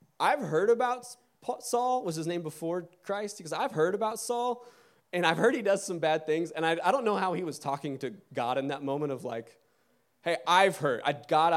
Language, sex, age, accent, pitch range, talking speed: English, male, 20-39, American, 155-210 Hz, 220 wpm